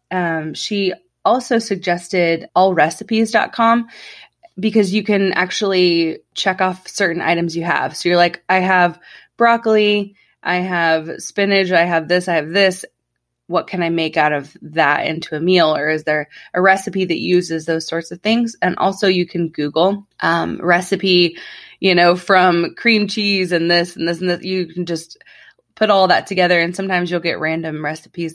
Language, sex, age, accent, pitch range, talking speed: English, female, 20-39, American, 165-190 Hz, 175 wpm